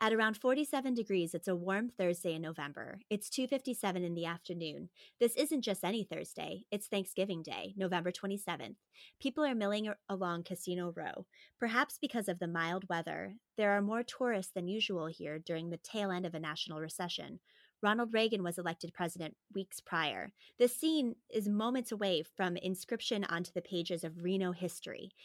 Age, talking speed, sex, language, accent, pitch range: 30-49, 170 wpm, female, English, American, 170-210 Hz